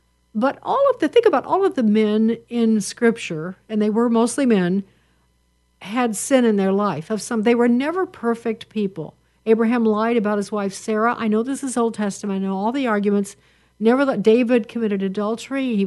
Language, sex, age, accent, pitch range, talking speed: English, female, 60-79, American, 195-235 Hz, 195 wpm